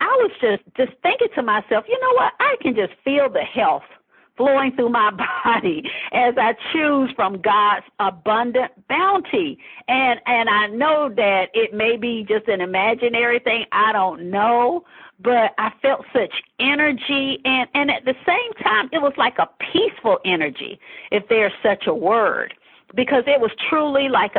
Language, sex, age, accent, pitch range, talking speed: English, female, 50-69, American, 205-275 Hz, 170 wpm